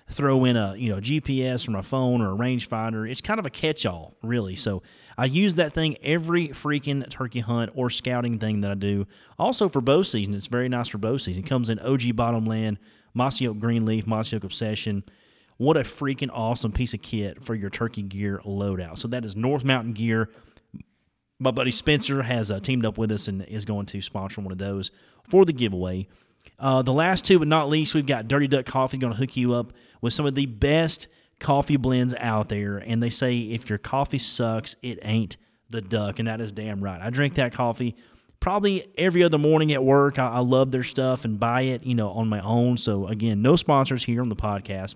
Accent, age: American, 30-49